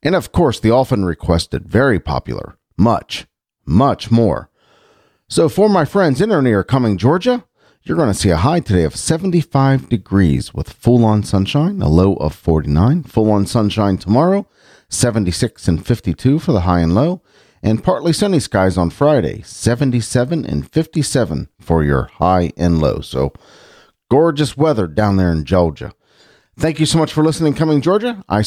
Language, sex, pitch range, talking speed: English, male, 90-145 Hz, 170 wpm